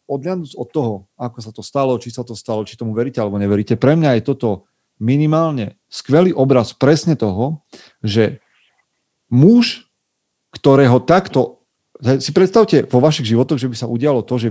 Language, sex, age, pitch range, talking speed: Slovak, male, 40-59, 110-140 Hz, 165 wpm